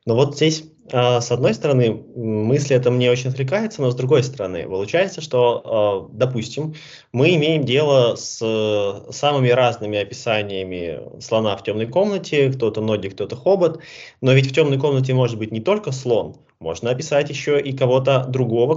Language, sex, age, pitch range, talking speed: Russian, male, 20-39, 115-145 Hz, 155 wpm